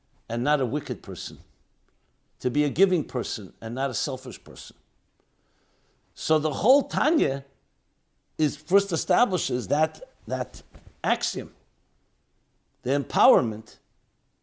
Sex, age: male, 60-79